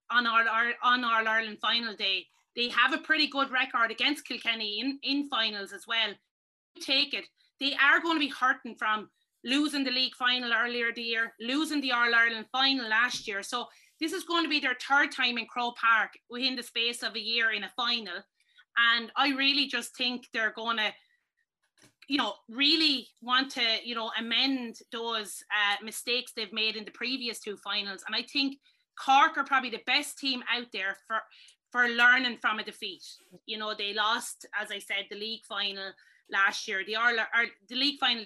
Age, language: 30-49, English